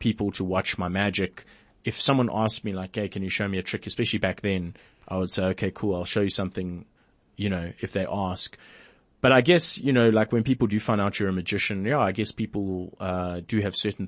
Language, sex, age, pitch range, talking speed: English, male, 30-49, 95-110 Hz, 240 wpm